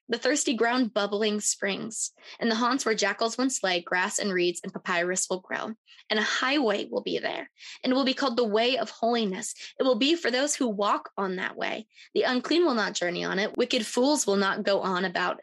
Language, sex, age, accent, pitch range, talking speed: English, female, 20-39, American, 195-245 Hz, 225 wpm